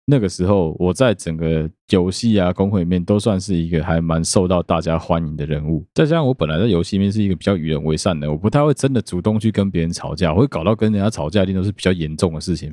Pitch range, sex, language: 80-105 Hz, male, Chinese